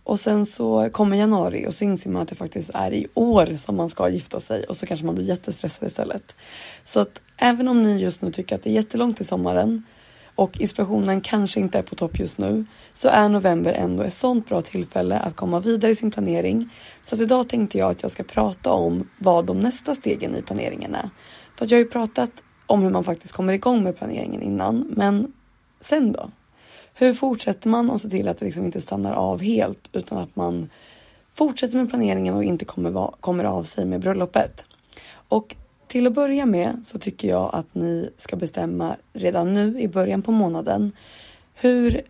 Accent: native